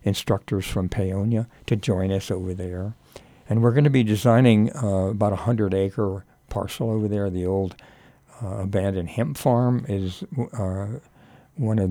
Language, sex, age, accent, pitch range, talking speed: English, male, 60-79, American, 95-115 Hz, 160 wpm